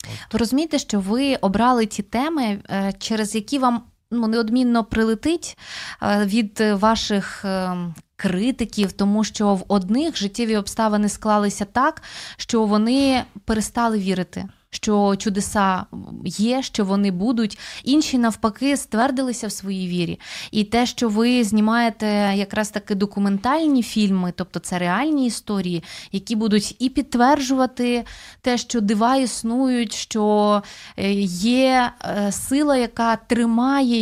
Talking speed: 115 wpm